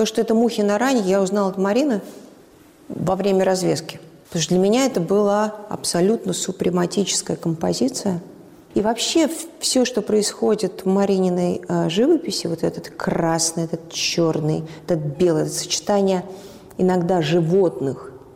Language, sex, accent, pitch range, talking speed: Russian, female, native, 160-200 Hz, 130 wpm